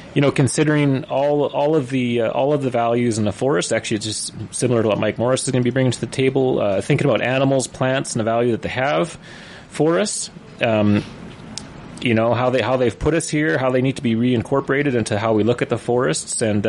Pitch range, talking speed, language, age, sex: 105-130 Hz, 245 wpm, English, 30-49, male